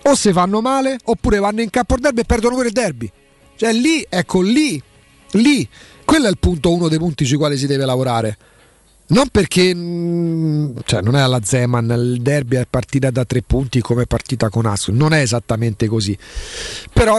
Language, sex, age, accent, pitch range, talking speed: Italian, male, 40-59, native, 130-185 Hz, 190 wpm